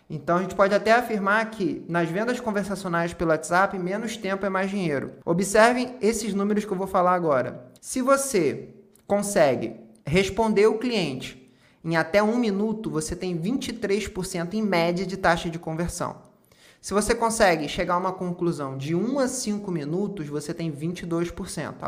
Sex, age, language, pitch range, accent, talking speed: male, 20-39, Portuguese, 175-215 Hz, Brazilian, 160 wpm